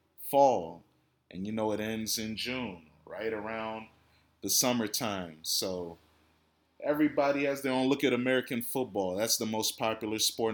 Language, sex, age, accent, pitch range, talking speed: English, male, 20-39, American, 100-120 Hz, 150 wpm